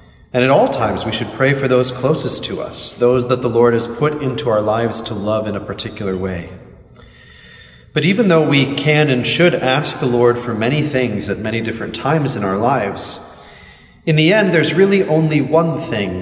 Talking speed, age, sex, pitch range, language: 205 wpm, 30-49, male, 105-140 Hz, English